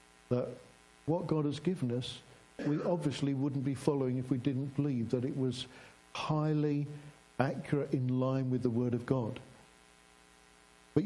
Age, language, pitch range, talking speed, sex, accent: 60-79, English, 120-155 Hz, 150 wpm, male, British